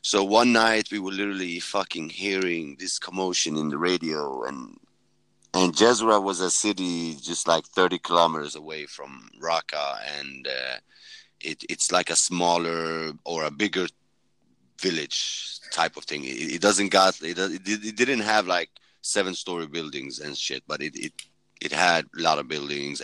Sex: male